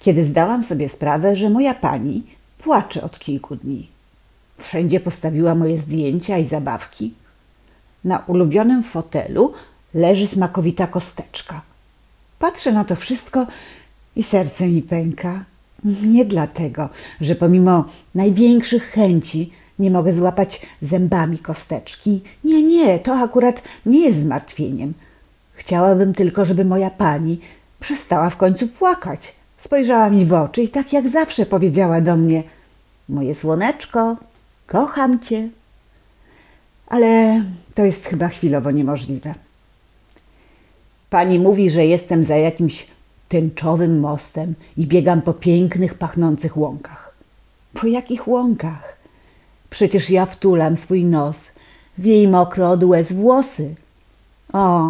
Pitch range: 160-220 Hz